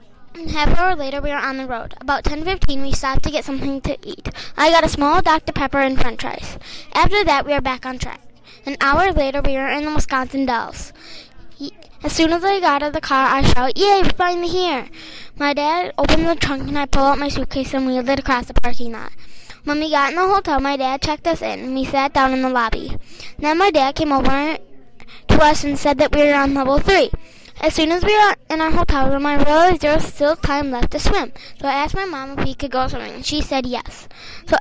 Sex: female